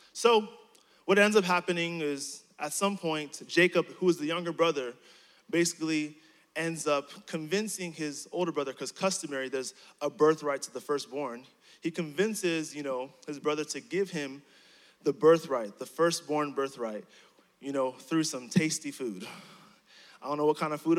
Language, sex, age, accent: English, male, 20-39, American